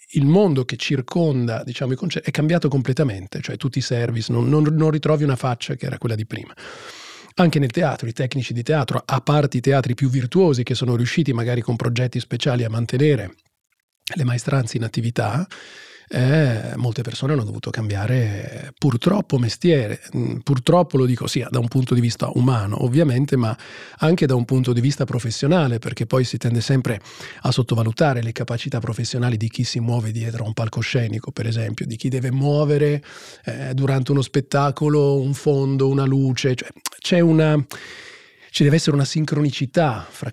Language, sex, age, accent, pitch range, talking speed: Italian, male, 40-59, native, 120-150 Hz, 180 wpm